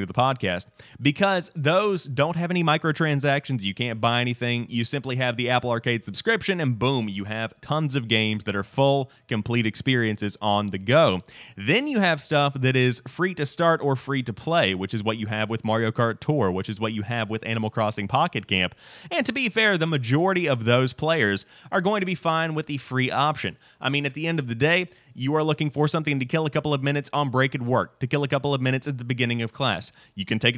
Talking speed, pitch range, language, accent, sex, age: 235 wpm, 115-150 Hz, English, American, male, 30-49